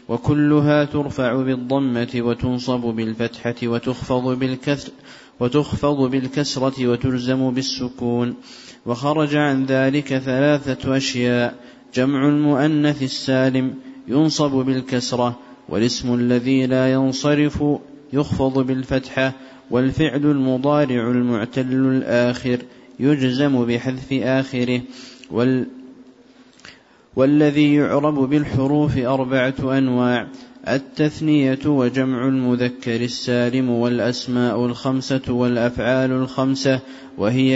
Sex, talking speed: male, 75 wpm